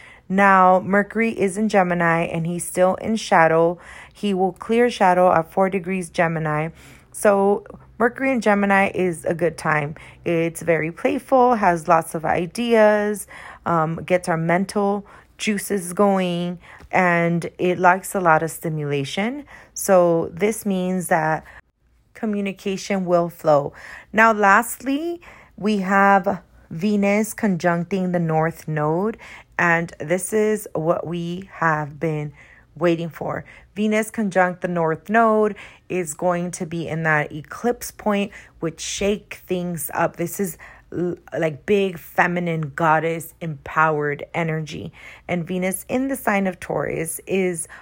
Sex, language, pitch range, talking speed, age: female, English, 165-200 Hz, 130 wpm, 30-49